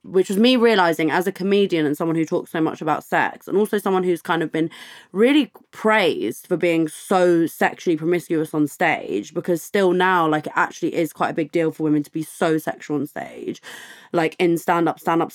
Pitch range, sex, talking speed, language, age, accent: 165-200 Hz, female, 210 wpm, English, 20-39, British